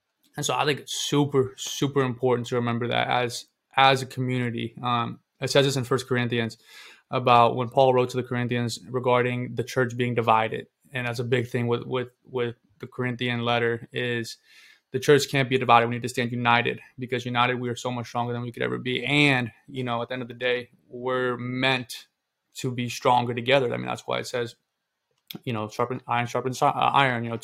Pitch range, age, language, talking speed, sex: 120-130 Hz, 20-39, English, 210 wpm, male